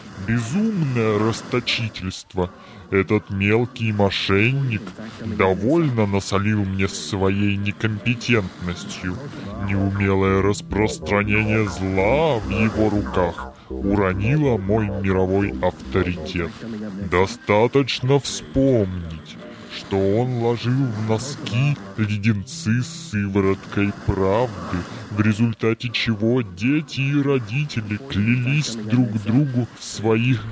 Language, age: Russian, 20-39